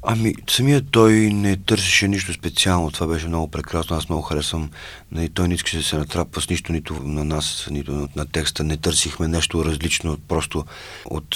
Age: 40-59